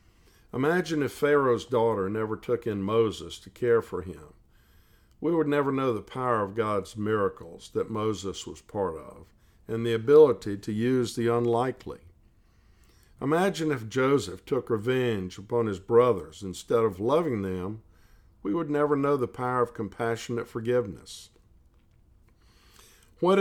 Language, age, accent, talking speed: English, 50-69, American, 140 wpm